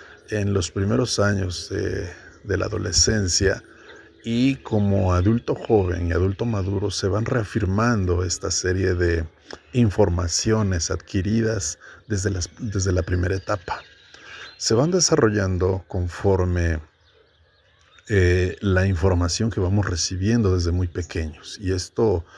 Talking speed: 115 wpm